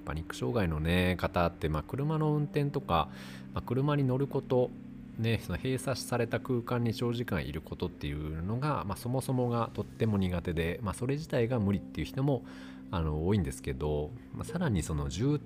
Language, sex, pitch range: Japanese, male, 80-125 Hz